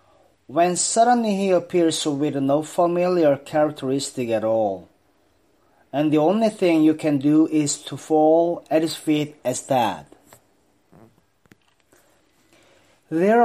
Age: 40-59